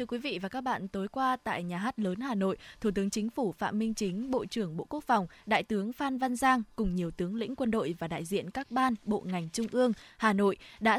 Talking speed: 270 wpm